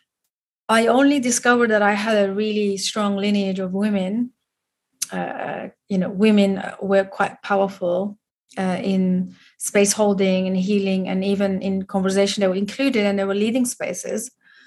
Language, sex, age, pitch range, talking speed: English, female, 30-49, 195-220 Hz, 150 wpm